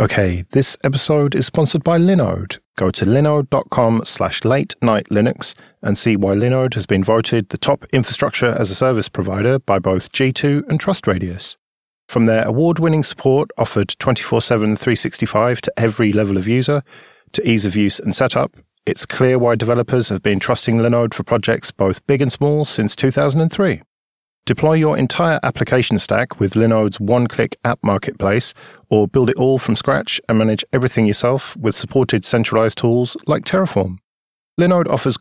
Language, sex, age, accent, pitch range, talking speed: English, male, 40-59, British, 105-135 Hz, 165 wpm